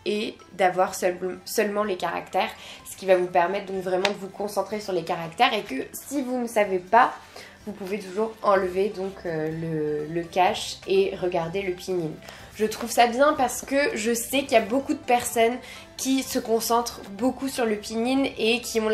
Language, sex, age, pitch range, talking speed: French, female, 20-39, 185-235 Hz, 200 wpm